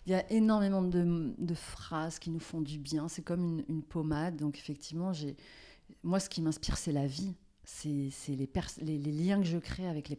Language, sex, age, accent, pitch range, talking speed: French, female, 30-49, French, 155-190 Hz, 230 wpm